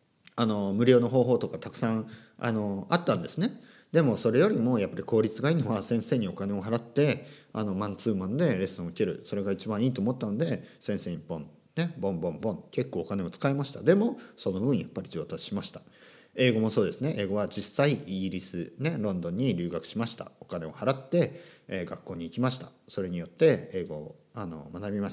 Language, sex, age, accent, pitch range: Japanese, male, 40-59, native, 100-155 Hz